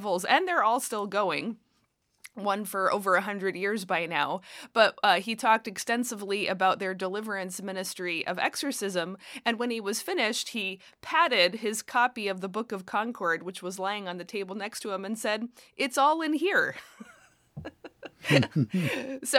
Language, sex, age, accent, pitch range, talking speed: English, female, 30-49, American, 180-225 Hz, 165 wpm